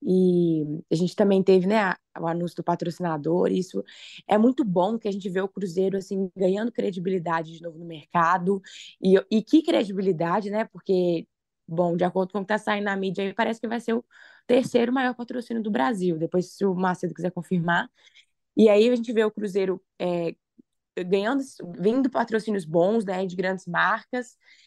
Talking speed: 180 wpm